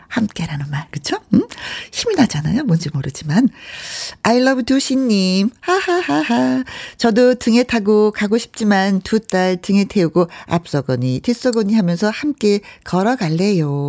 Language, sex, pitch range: Korean, female, 170-240 Hz